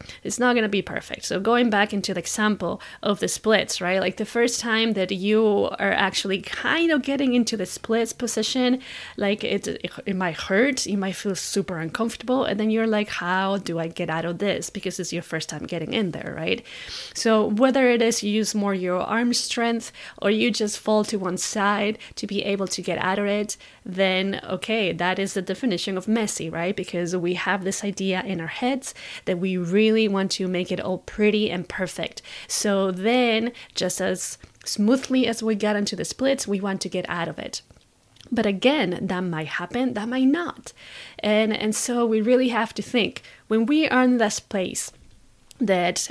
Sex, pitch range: female, 185-235 Hz